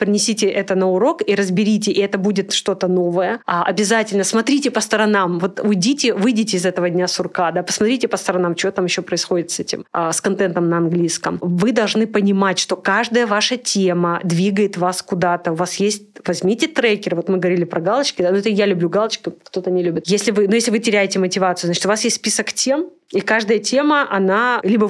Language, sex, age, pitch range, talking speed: Russian, female, 30-49, 185-215 Hz, 195 wpm